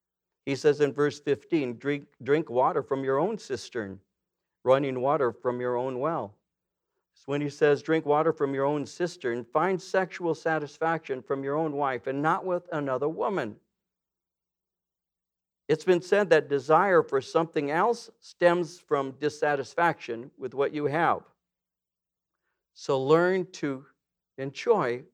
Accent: American